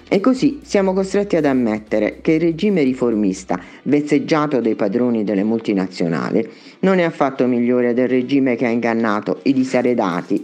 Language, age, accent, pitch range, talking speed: Italian, 50-69, native, 115-165 Hz, 150 wpm